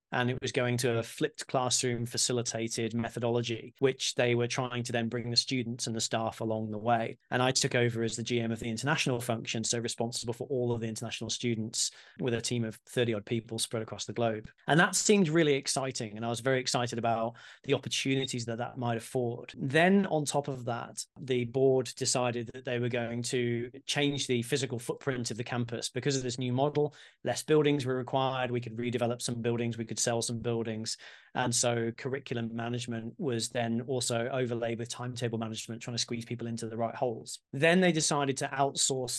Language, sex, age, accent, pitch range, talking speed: English, male, 30-49, British, 115-130 Hz, 205 wpm